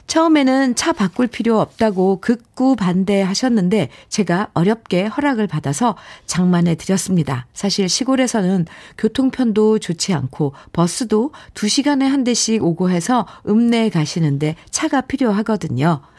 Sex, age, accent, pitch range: female, 50-69, native, 160-225 Hz